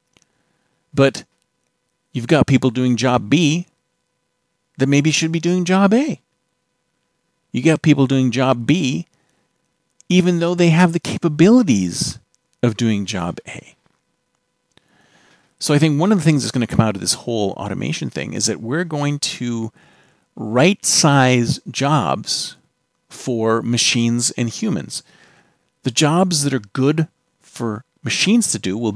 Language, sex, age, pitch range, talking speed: English, male, 40-59, 120-160 Hz, 140 wpm